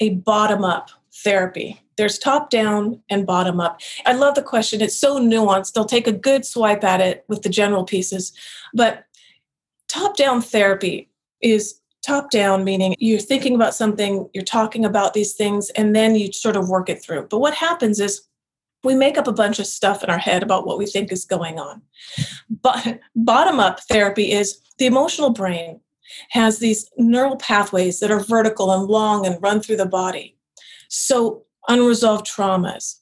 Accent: American